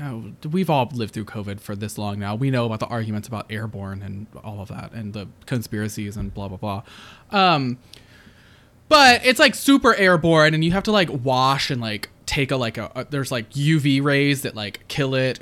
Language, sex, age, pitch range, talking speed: English, male, 20-39, 110-150 Hz, 210 wpm